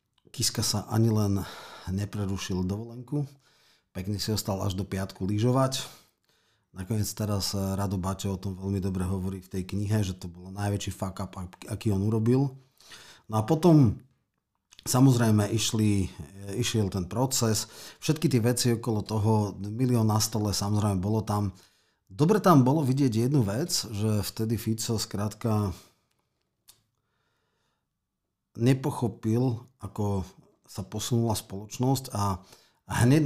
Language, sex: Slovak, male